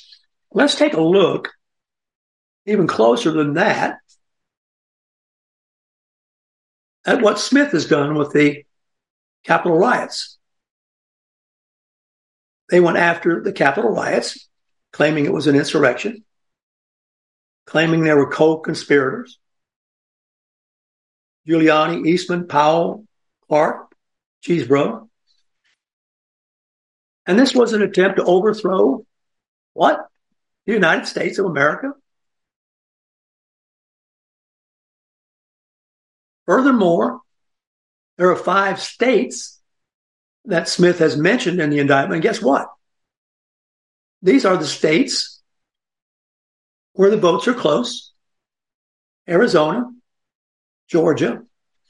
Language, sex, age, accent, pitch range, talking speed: English, male, 60-79, American, 150-210 Hz, 85 wpm